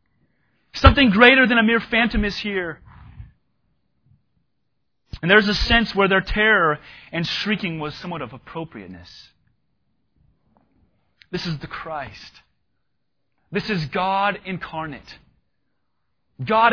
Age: 30-49